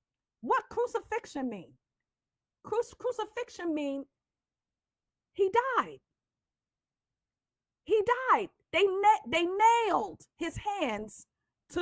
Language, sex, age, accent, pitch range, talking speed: English, female, 40-59, American, 310-455 Hz, 75 wpm